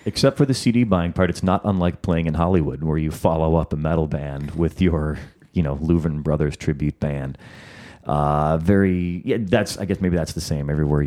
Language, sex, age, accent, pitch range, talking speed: English, male, 30-49, American, 75-95 Hz, 205 wpm